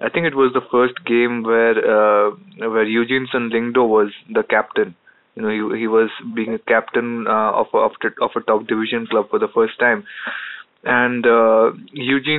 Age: 20-39